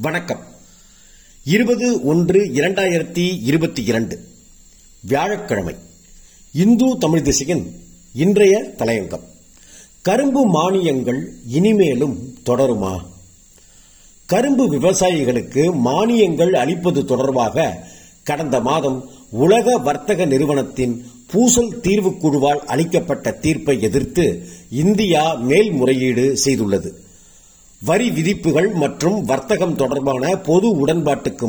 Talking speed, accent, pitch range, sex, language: 80 wpm, native, 130-190 Hz, male, Tamil